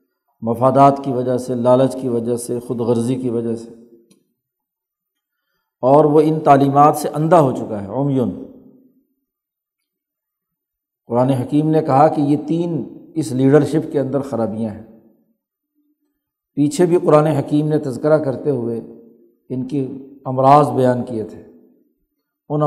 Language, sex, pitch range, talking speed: Urdu, male, 135-170 Hz, 140 wpm